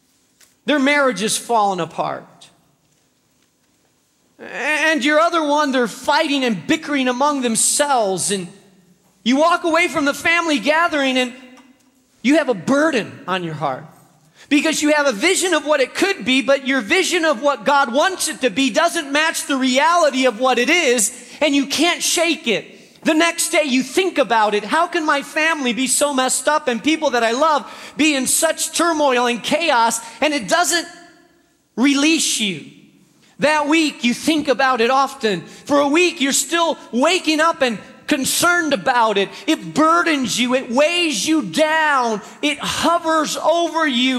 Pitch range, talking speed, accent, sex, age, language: 245-315 Hz, 170 wpm, American, male, 40-59, English